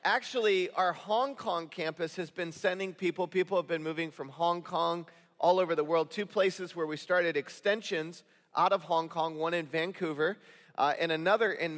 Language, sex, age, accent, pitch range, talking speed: English, male, 40-59, American, 160-200 Hz, 190 wpm